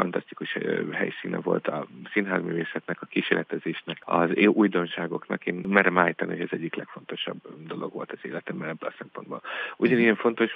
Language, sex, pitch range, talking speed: Hungarian, male, 85-100 Hz, 140 wpm